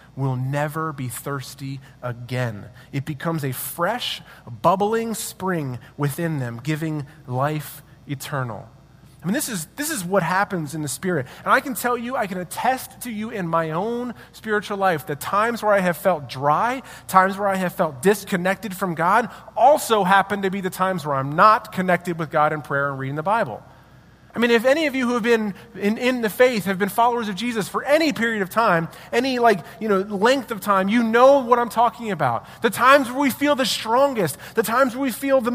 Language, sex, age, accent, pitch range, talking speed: English, male, 30-49, American, 170-245 Hz, 210 wpm